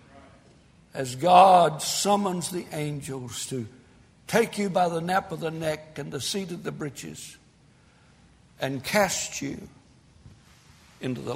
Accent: American